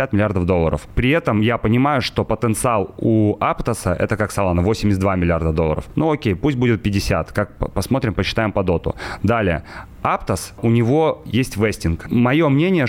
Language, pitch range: Russian, 95-120 Hz